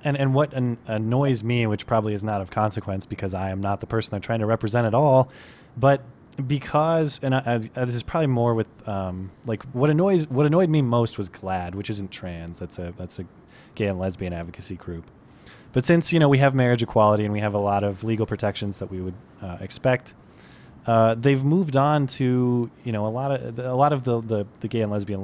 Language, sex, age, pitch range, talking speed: English, male, 20-39, 105-135 Hz, 230 wpm